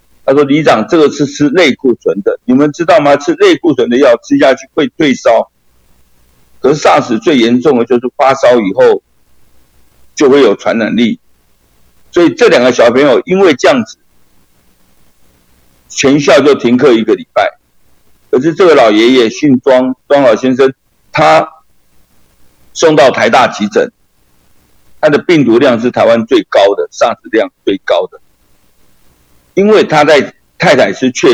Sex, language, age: male, Chinese, 50-69